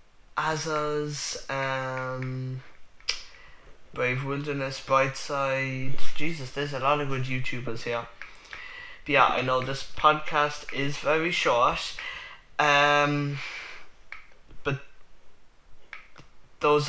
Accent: British